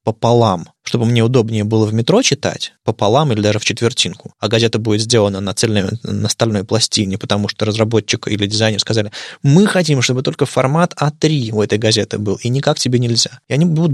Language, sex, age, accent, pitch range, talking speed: Russian, male, 20-39, native, 110-135 Hz, 195 wpm